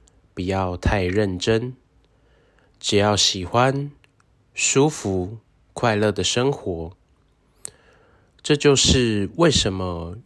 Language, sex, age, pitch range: Chinese, male, 20-39, 90-110 Hz